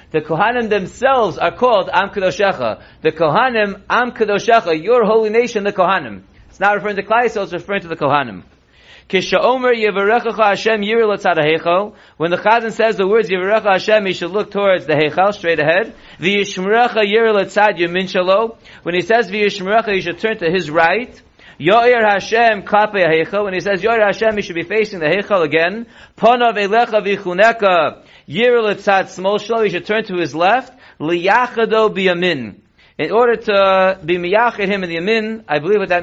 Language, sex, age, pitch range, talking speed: English, male, 40-59, 175-220 Hz, 145 wpm